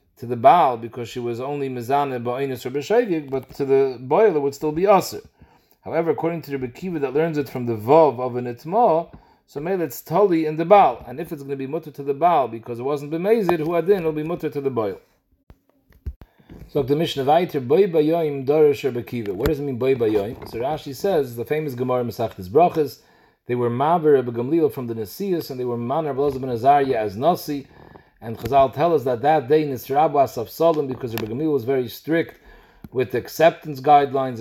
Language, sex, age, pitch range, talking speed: English, male, 40-59, 125-160 Hz, 210 wpm